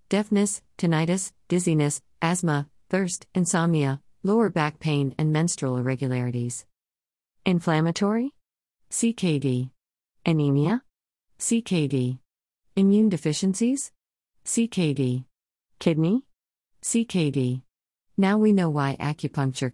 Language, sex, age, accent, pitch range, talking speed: English, female, 40-59, American, 130-180 Hz, 105 wpm